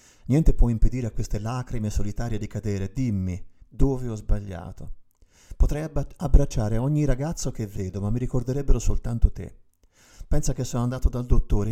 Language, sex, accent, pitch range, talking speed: Italian, male, native, 100-120 Hz, 155 wpm